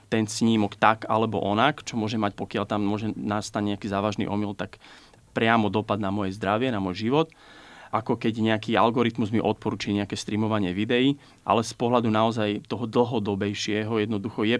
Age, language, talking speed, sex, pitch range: 30-49, Slovak, 170 wpm, male, 100-110 Hz